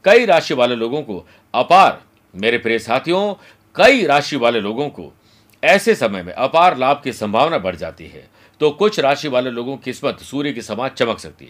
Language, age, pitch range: Hindi, 50-69, 110-150 Hz